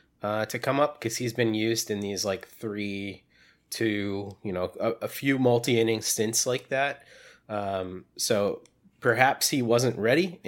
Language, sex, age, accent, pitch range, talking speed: English, male, 30-49, American, 105-120 Hz, 160 wpm